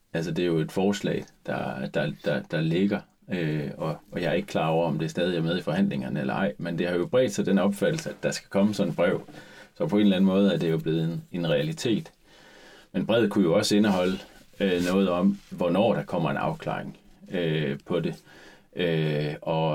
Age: 30-49